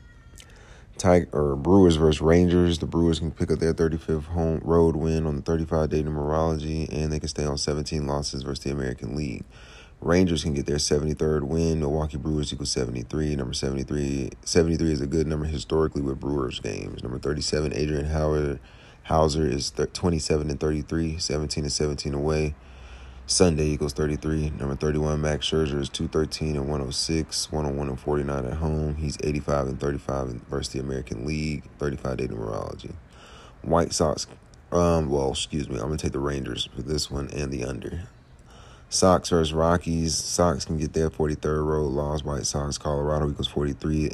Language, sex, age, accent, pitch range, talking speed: English, male, 30-49, American, 70-80 Hz, 170 wpm